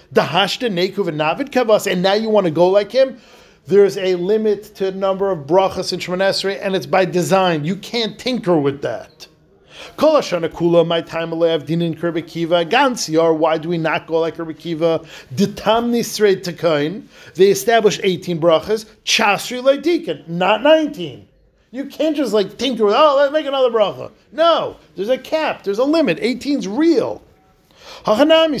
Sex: male